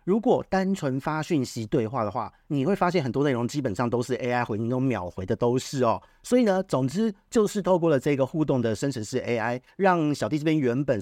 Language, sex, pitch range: Chinese, male, 120-165 Hz